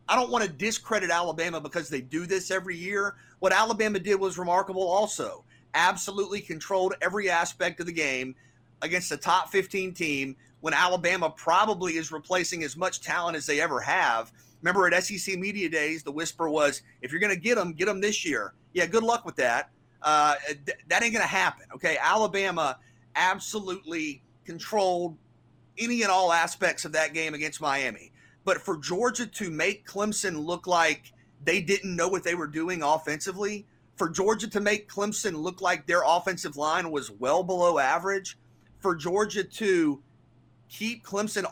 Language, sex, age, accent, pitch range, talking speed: English, male, 30-49, American, 150-195 Hz, 170 wpm